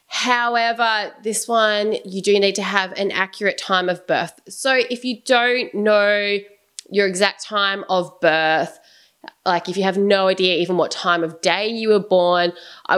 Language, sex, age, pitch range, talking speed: English, female, 20-39, 180-225 Hz, 175 wpm